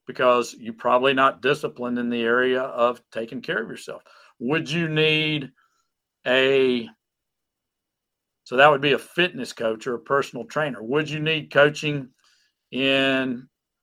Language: English